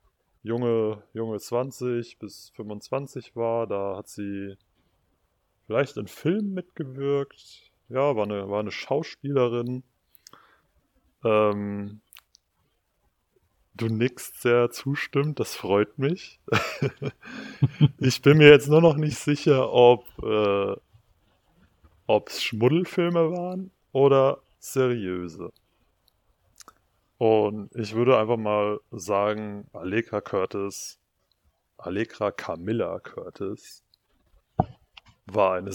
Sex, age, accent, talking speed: male, 20-39, German, 90 wpm